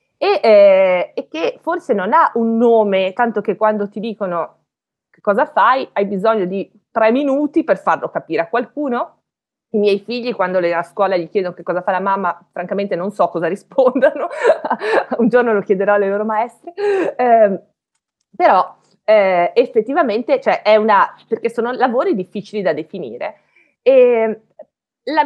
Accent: native